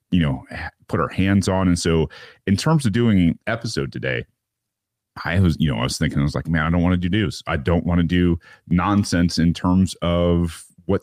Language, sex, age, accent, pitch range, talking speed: English, male, 30-49, American, 80-100 Hz, 225 wpm